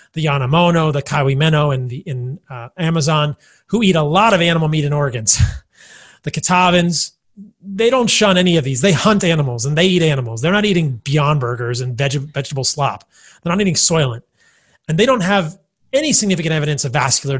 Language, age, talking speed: English, 30-49, 190 wpm